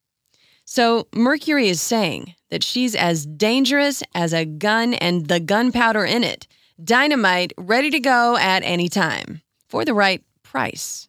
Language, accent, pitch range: English, American, 175-245 Hz